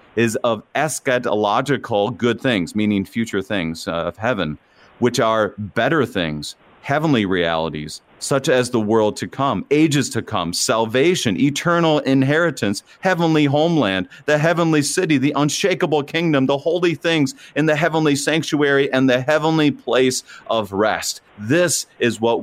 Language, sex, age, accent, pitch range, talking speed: English, male, 40-59, American, 110-150 Hz, 140 wpm